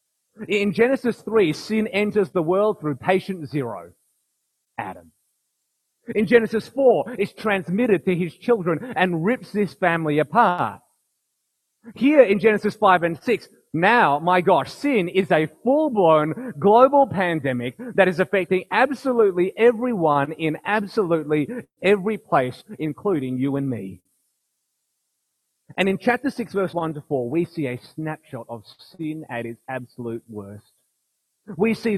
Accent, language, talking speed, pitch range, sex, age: Australian, English, 135 wpm, 135-210 Hz, male, 30-49